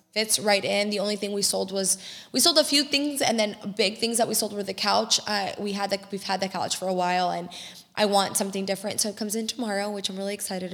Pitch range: 195-220 Hz